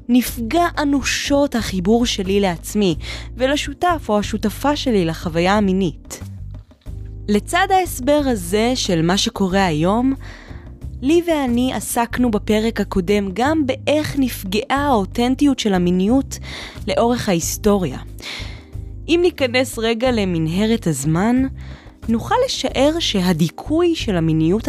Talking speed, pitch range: 100 wpm, 175-280 Hz